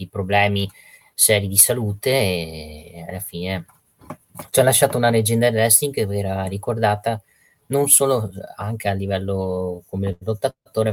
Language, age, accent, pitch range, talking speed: Italian, 20-39, native, 95-110 Hz, 135 wpm